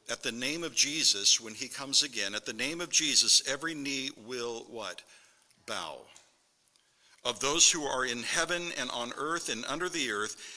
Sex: male